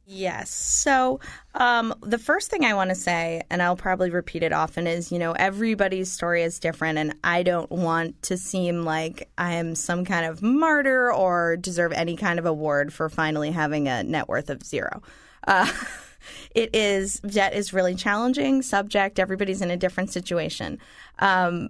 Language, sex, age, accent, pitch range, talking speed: English, female, 20-39, American, 165-195 Hz, 175 wpm